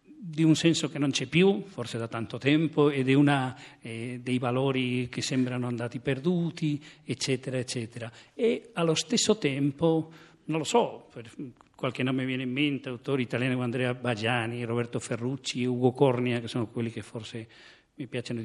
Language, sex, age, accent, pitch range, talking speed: Italian, male, 50-69, native, 125-150 Hz, 170 wpm